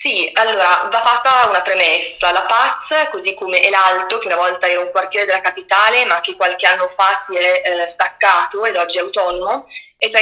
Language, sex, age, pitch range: Italian, female, 20-39, 190-240 Hz